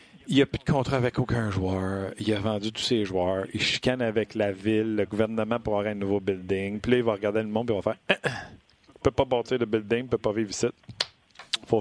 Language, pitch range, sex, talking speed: French, 125-170 Hz, male, 265 wpm